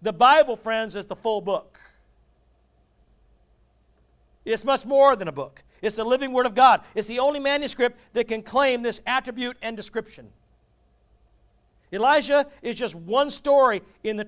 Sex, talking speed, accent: male, 155 wpm, American